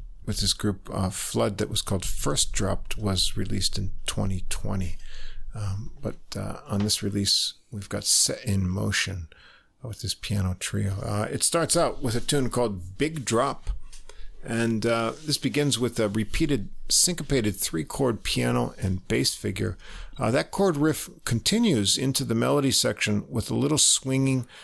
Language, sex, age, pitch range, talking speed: English, male, 50-69, 100-125 Hz, 160 wpm